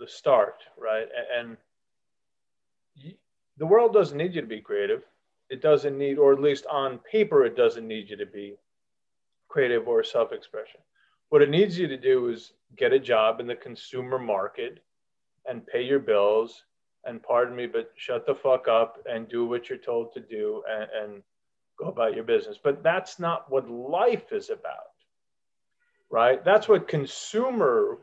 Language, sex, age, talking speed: English, male, 30-49, 170 wpm